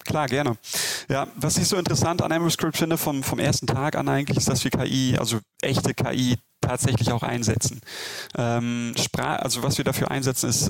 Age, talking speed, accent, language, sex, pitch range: 30-49, 190 wpm, German, German, male, 115-135 Hz